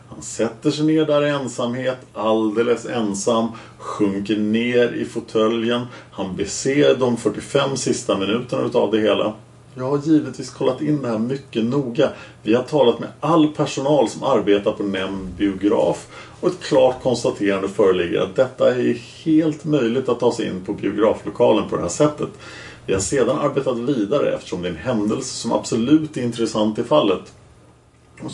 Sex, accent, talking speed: male, Norwegian, 165 wpm